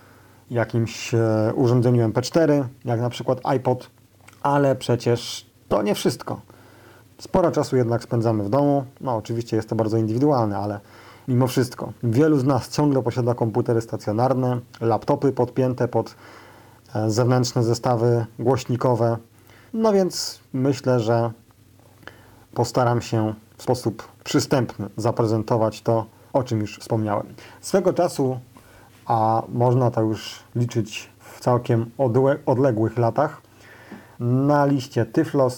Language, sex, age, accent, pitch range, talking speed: Polish, male, 40-59, native, 115-130 Hz, 115 wpm